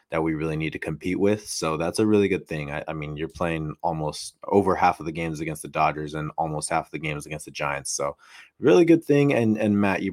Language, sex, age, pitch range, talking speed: English, male, 20-39, 80-105 Hz, 260 wpm